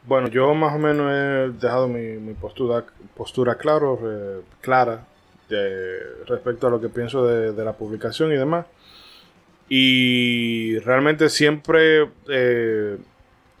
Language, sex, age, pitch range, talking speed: Spanish, male, 20-39, 115-135 Hz, 130 wpm